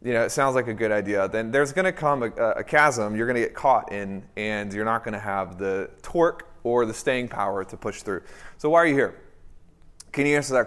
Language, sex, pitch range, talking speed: English, male, 95-130 Hz, 260 wpm